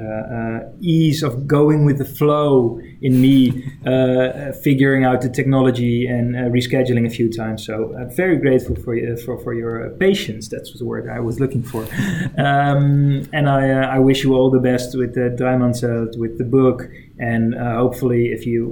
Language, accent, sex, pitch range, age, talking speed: English, Dutch, male, 115-130 Hz, 20-39, 200 wpm